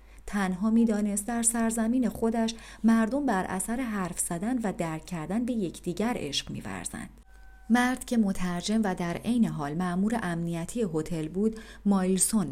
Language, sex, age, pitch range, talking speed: Persian, female, 40-59, 175-230 Hz, 140 wpm